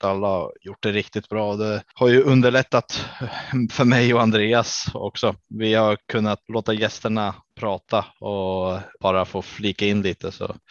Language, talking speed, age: Swedish, 155 wpm, 20-39